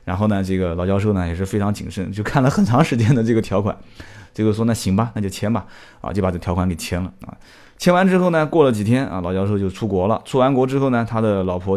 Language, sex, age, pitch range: Chinese, male, 20-39, 100-130 Hz